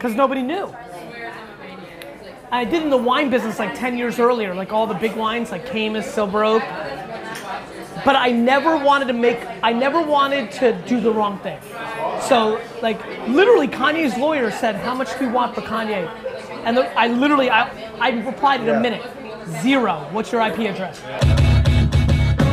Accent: American